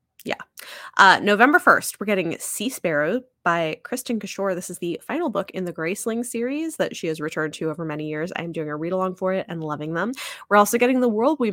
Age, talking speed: 20-39, 225 wpm